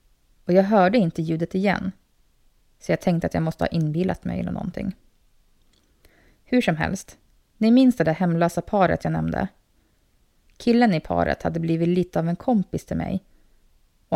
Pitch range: 160-190 Hz